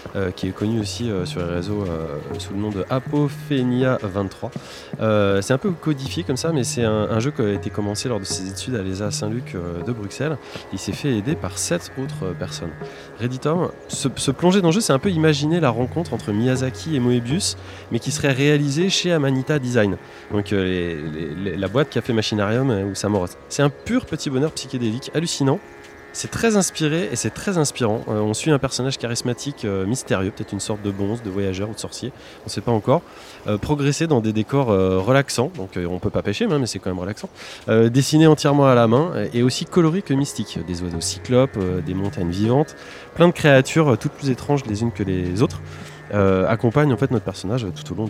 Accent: French